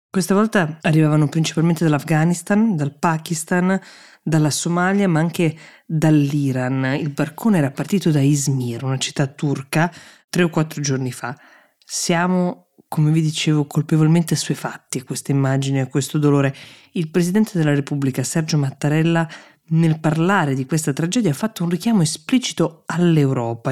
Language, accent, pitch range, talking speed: Italian, native, 140-170 Hz, 140 wpm